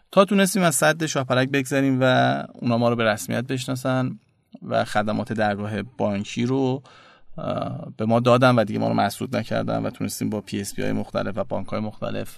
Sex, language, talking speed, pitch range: male, Persian, 185 wpm, 110-135 Hz